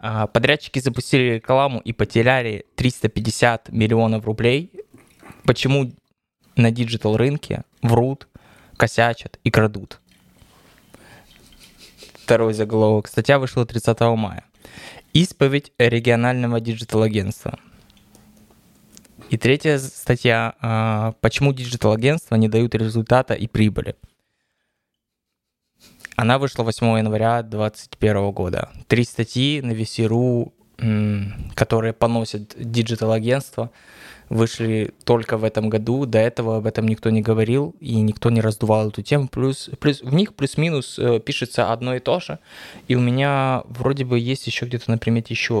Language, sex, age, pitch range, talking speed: Russian, male, 20-39, 110-130 Hz, 115 wpm